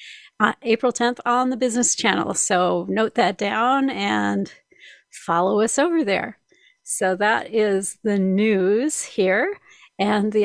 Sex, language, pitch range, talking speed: female, English, 195-235 Hz, 140 wpm